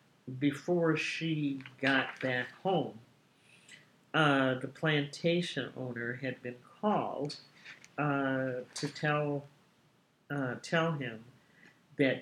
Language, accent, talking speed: English, American, 95 wpm